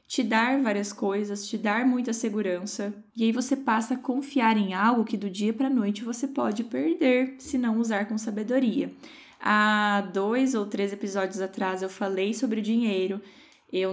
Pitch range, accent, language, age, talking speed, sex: 205-265 Hz, Brazilian, Portuguese, 10-29, 180 wpm, female